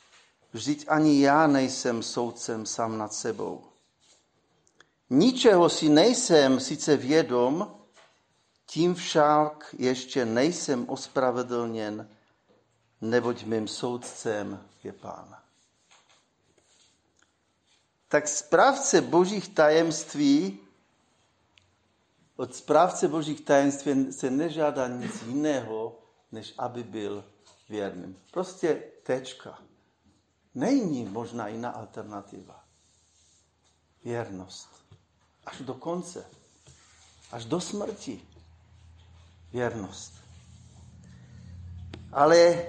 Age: 50-69